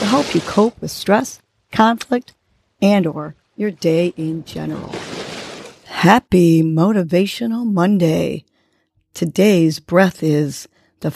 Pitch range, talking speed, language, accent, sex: 155-205 Hz, 100 wpm, English, American, female